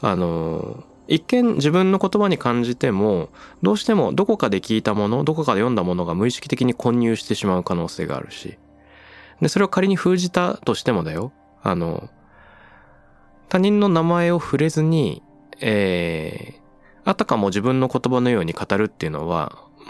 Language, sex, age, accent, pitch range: Japanese, male, 20-39, native, 95-155 Hz